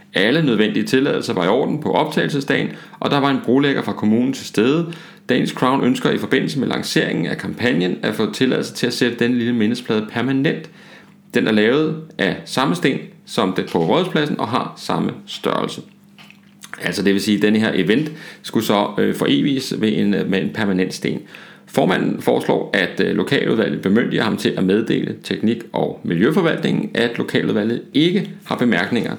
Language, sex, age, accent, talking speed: Danish, male, 40-59, native, 170 wpm